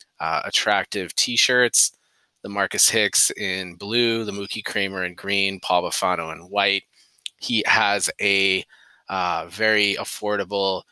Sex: male